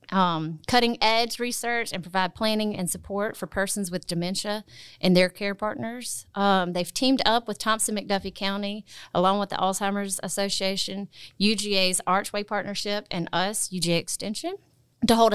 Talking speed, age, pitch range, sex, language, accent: 145 wpm, 30-49, 175-205 Hz, female, English, American